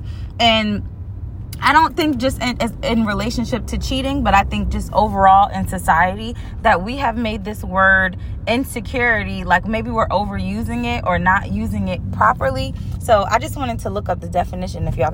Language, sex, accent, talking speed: English, female, American, 180 wpm